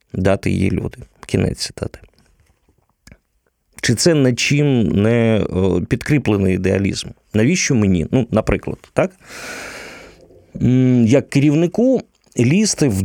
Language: Ukrainian